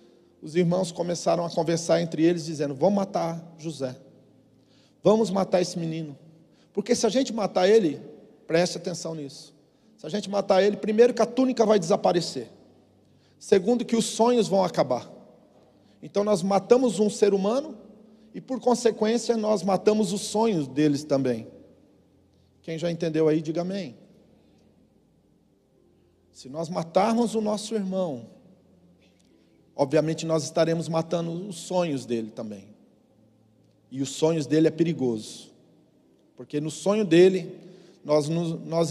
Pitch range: 150-215 Hz